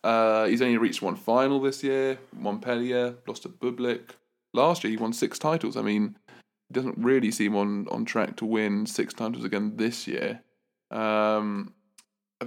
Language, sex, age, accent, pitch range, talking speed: English, male, 20-39, British, 105-125 Hz, 175 wpm